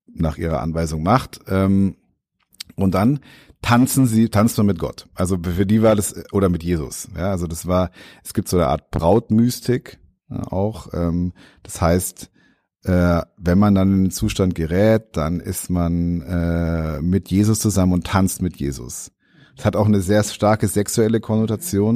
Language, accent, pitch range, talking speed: German, German, 90-110 Hz, 170 wpm